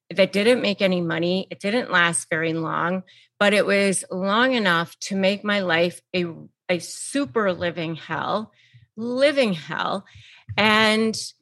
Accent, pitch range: American, 175-230 Hz